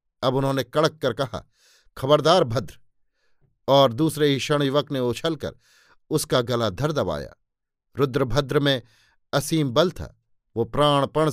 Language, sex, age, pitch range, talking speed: Hindi, male, 50-69, 125-150 Hz, 130 wpm